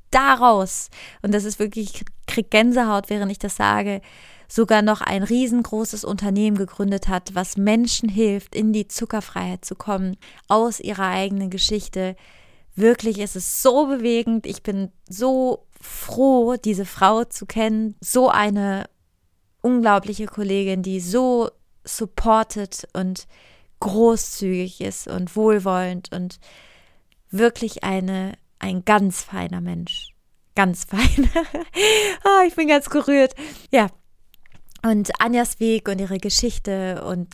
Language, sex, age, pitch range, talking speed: German, female, 20-39, 190-240 Hz, 125 wpm